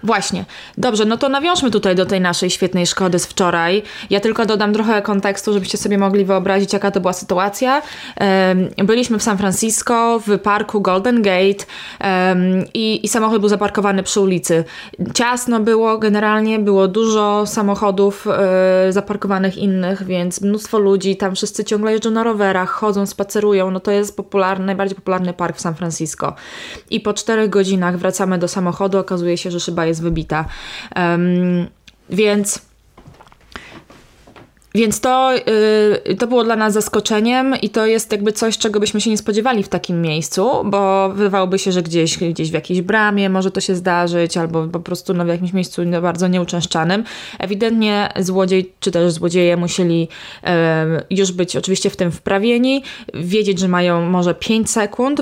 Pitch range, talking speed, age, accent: 180-215 Hz, 160 wpm, 20-39, native